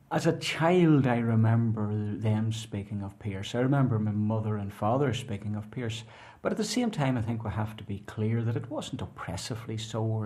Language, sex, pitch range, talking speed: English, male, 105-120 Hz, 210 wpm